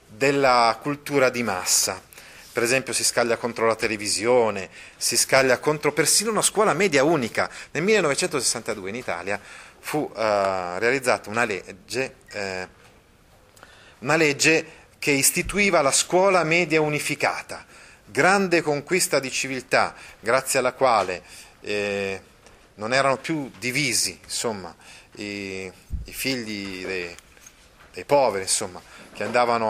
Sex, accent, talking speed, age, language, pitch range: male, native, 120 wpm, 30-49, Italian, 105-145 Hz